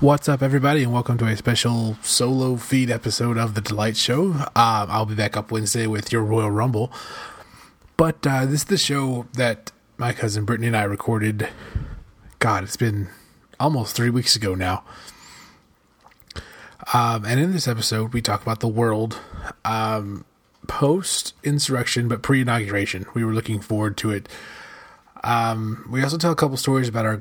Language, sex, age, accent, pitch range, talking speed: English, male, 20-39, American, 105-125 Hz, 165 wpm